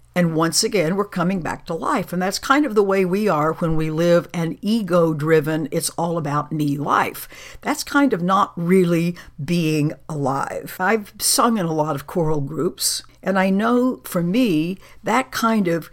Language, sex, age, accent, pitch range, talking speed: English, female, 60-79, American, 160-200 Hz, 175 wpm